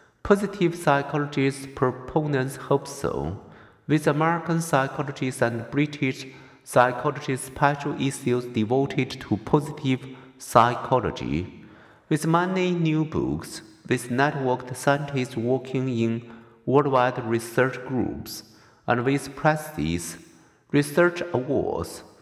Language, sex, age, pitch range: Chinese, male, 50-69, 120-145 Hz